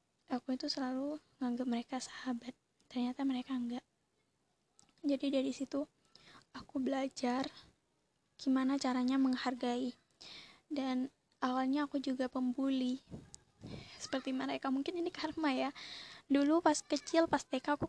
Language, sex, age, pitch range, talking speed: Indonesian, female, 20-39, 245-275 Hz, 115 wpm